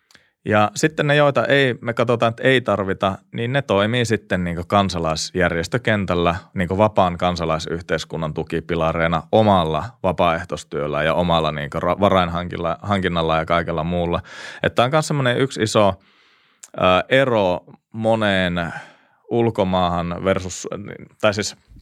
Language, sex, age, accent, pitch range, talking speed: Finnish, male, 30-49, native, 90-115 Hz, 115 wpm